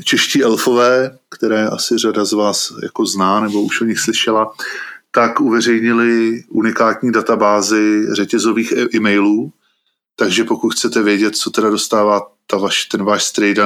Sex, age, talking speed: male, 20-39, 135 wpm